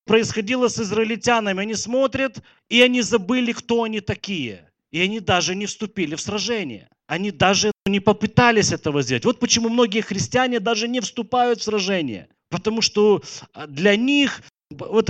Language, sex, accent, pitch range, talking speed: Russian, male, native, 160-225 Hz, 150 wpm